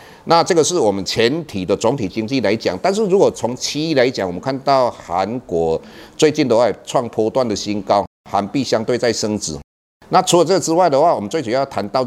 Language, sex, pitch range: Chinese, male, 100-145 Hz